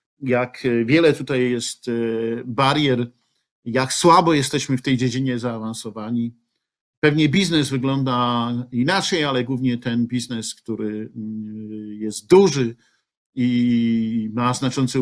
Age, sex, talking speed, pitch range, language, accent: 50-69, male, 105 wpm, 120-150 Hz, Polish, native